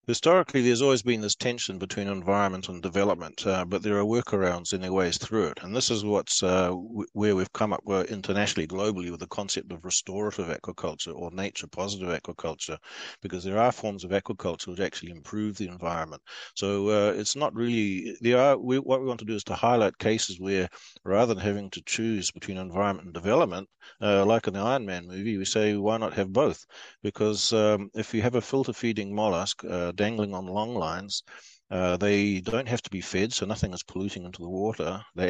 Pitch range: 90-110 Hz